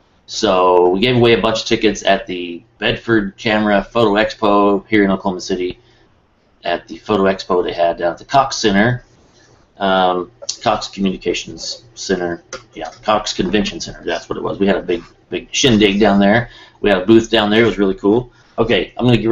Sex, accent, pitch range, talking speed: male, American, 95-115 Hz, 200 wpm